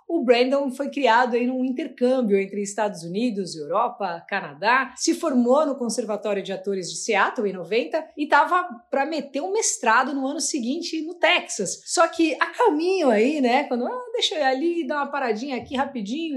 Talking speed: 185 wpm